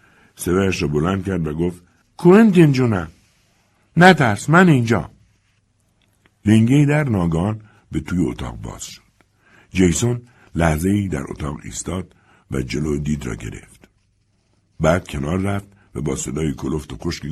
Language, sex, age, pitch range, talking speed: Persian, male, 60-79, 80-110 Hz, 135 wpm